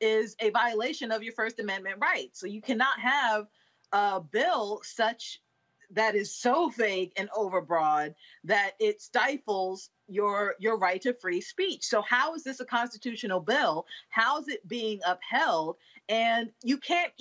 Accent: American